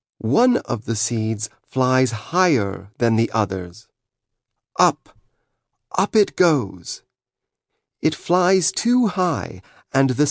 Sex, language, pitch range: male, Chinese, 115-150 Hz